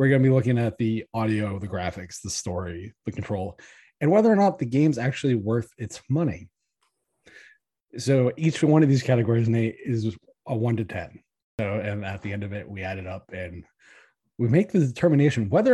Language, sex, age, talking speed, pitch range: English, male, 20-39, 200 wpm, 110-150 Hz